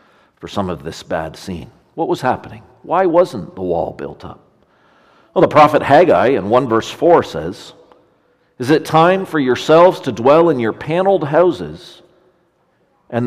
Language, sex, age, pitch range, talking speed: English, male, 50-69, 120-175 Hz, 165 wpm